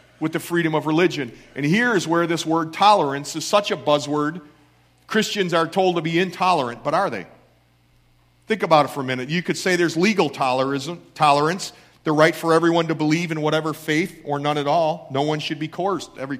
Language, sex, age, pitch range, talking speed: English, male, 40-59, 135-195 Hz, 205 wpm